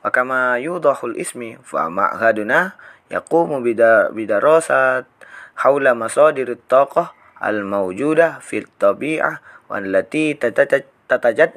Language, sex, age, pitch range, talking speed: Indonesian, male, 20-39, 115-150 Hz, 100 wpm